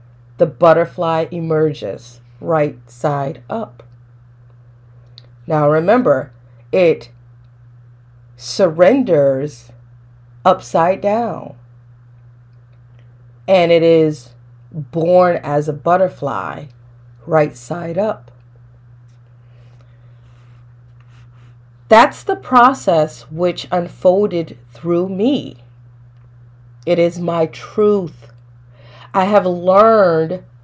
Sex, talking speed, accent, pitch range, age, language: female, 70 wpm, American, 120-175 Hz, 40-59, English